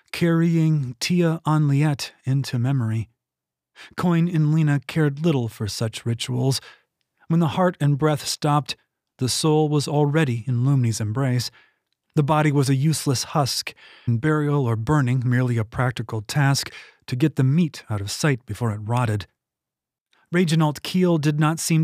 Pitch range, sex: 125-160 Hz, male